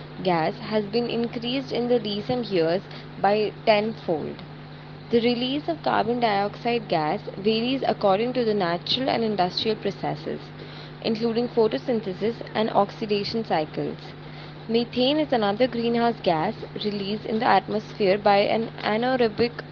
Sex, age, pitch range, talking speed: female, 20-39, 190-235 Hz, 125 wpm